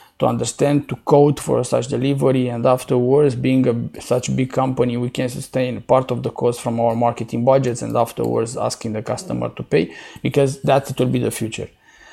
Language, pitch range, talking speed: English, 125-150 Hz, 185 wpm